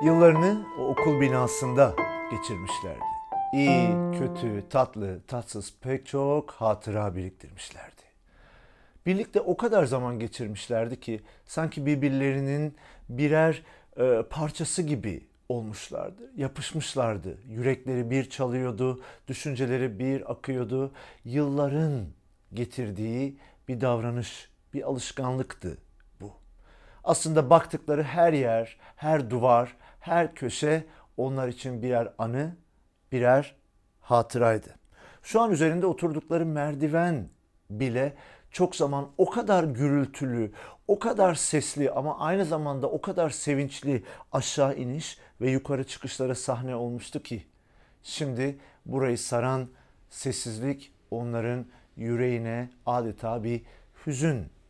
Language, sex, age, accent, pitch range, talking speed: Turkish, male, 50-69, native, 115-150 Hz, 100 wpm